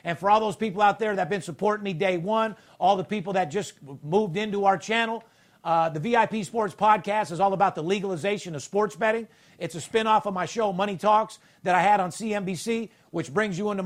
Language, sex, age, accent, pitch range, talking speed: English, male, 50-69, American, 165-215 Hz, 230 wpm